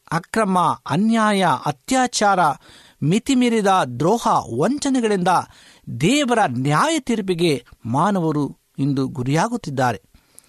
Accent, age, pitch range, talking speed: native, 60-79, 155-225 Hz, 70 wpm